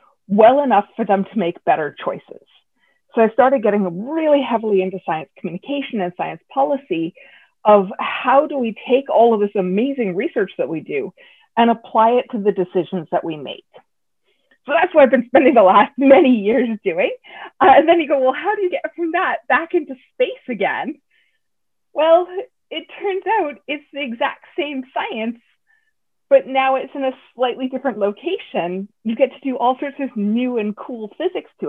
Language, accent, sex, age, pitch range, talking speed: English, American, female, 30-49, 210-285 Hz, 185 wpm